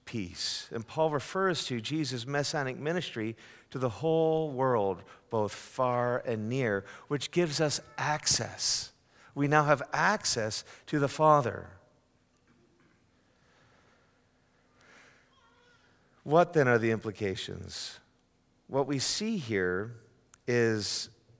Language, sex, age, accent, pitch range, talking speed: English, male, 50-69, American, 110-155 Hz, 105 wpm